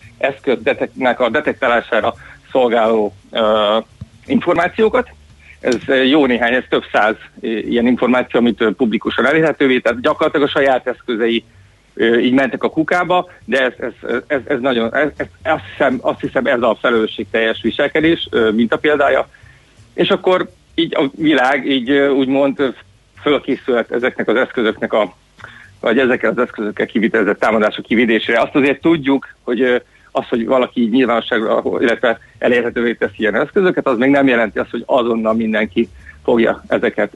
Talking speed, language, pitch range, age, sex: 150 wpm, Hungarian, 115-145 Hz, 50-69, male